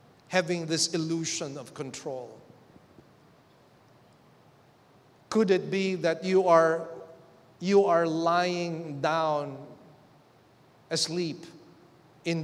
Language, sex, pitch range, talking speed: English, male, 130-160 Hz, 80 wpm